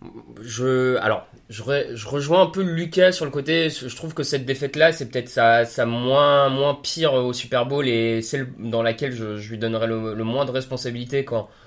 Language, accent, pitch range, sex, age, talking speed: French, French, 125-160 Hz, male, 20-39, 210 wpm